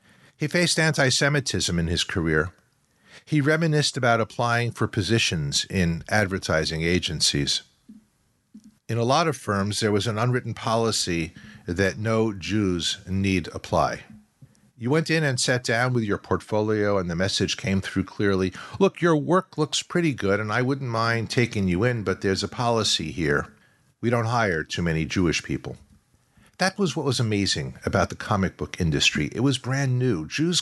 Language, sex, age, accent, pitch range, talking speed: English, male, 50-69, American, 95-130 Hz, 165 wpm